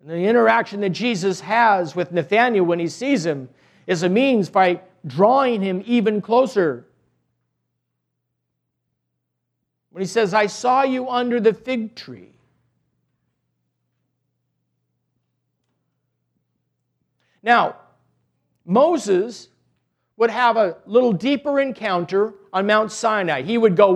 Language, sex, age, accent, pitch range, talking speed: English, male, 50-69, American, 170-235 Hz, 110 wpm